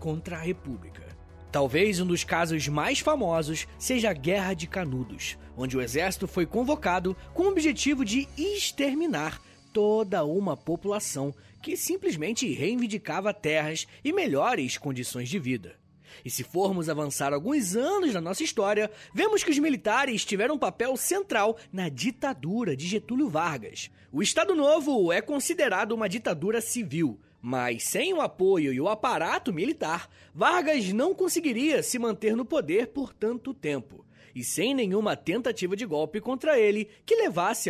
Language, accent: Portuguese, Brazilian